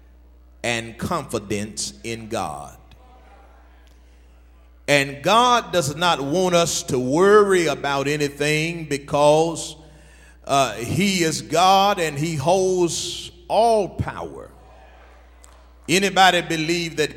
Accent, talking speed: American, 95 wpm